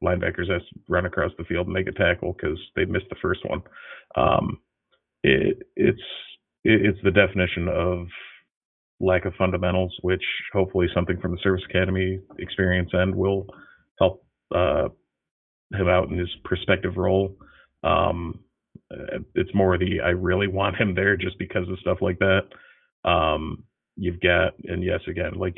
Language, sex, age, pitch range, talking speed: English, male, 30-49, 90-95 Hz, 155 wpm